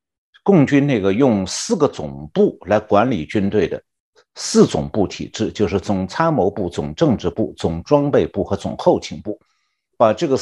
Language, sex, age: Chinese, male, 60-79